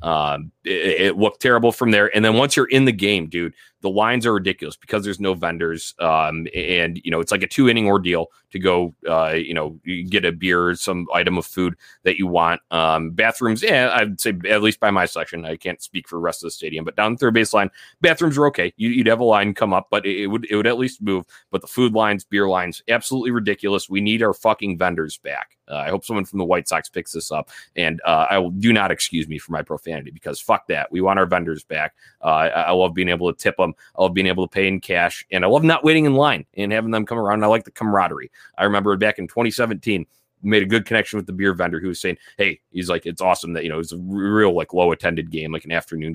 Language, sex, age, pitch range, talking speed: English, male, 30-49, 85-110 Hz, 260 wpm